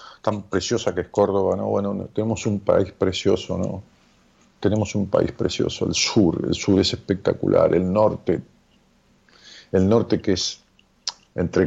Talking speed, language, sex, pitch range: 150 wpm, Spanish, male, 90-115 Hz